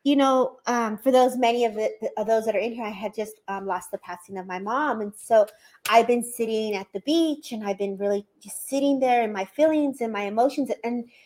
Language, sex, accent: English, female, American